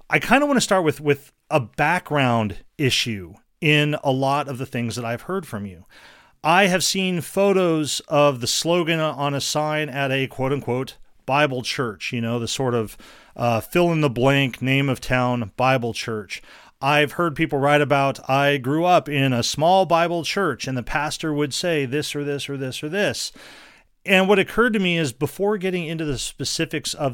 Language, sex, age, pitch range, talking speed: English, male, 40-59, 125-165 Hz, 185 wpm